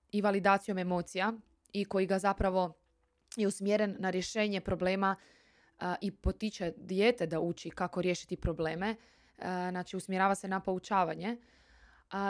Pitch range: 185-250 Hz